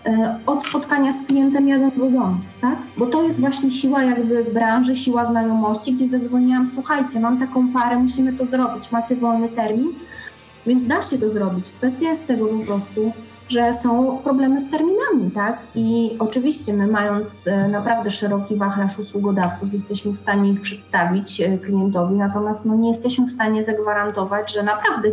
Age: 20-39